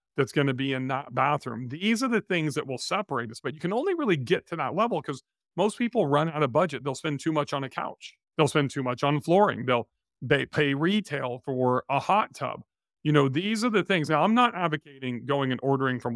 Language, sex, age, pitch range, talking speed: English, male, 40-59, 130-160 Hz, 245 wpm